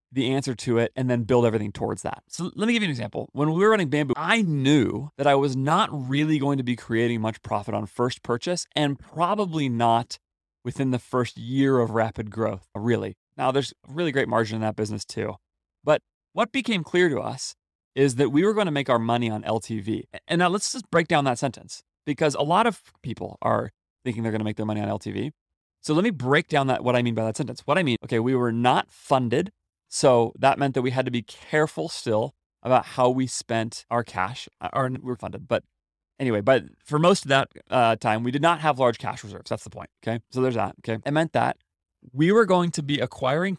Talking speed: 235 wpm